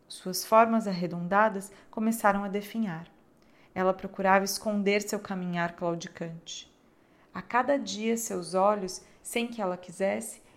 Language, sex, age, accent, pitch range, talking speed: Portuguese, female, 40-59, Brazilian, 185-235 Hz, 120 wpm